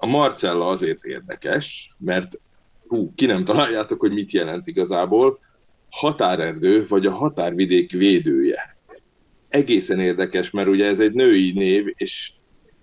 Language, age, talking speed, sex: Hungarian, 30-49, 125 wpm, male